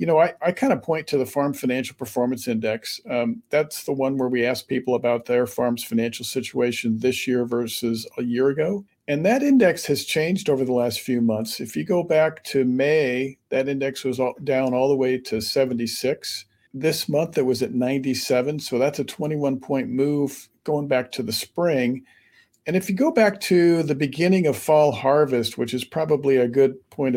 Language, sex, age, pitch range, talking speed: English, male, 50-69, 125-155 Hz, 200 wpm